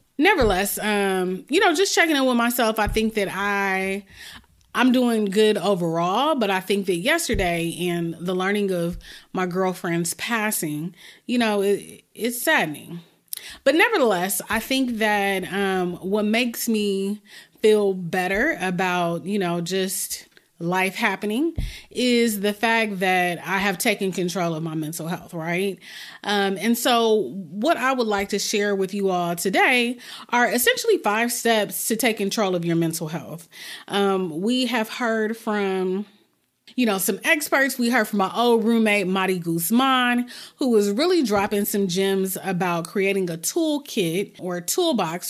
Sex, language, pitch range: female, English, 180-225 Hz